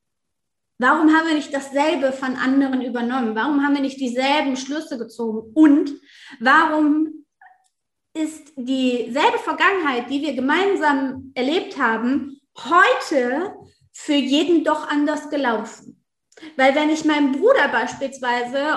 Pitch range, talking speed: 265-325 Hz, 120 wpm